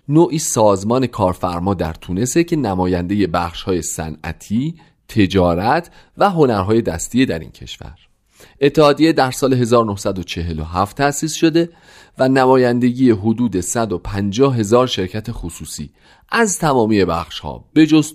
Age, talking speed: 40-59, 115 wpm